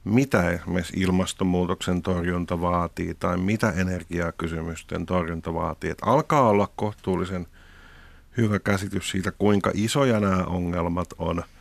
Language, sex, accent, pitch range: Finnish, male, native, 85-100 Hz